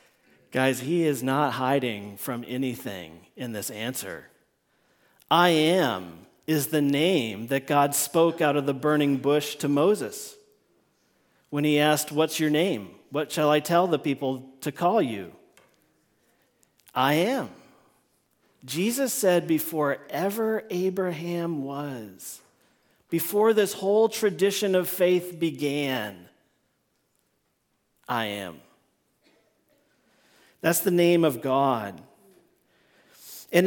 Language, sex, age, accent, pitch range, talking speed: English, male, 40-59, American, 135-180 Hz, 110 wpm